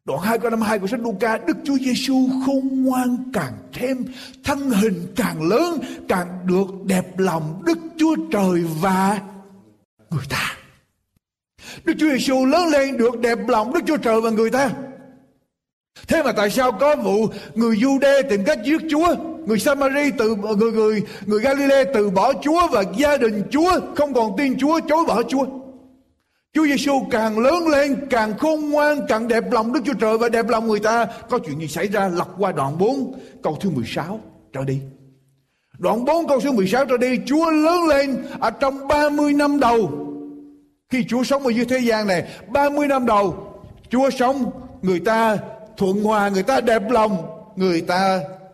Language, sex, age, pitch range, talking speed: Vietnamese, male, 60-79, 205-275 Hz, 180 wpm